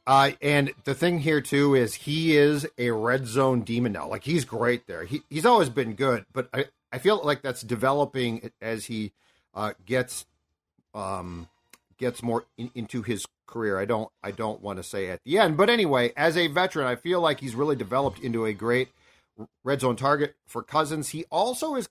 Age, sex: 40-59, male